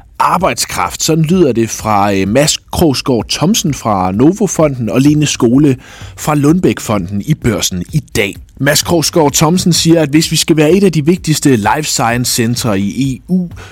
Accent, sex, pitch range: native, male, 110-155 Hz